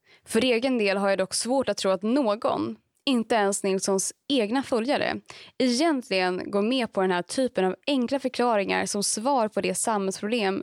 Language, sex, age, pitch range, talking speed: Swedish, female, 20-39, 195-260 Hz, 175 wpm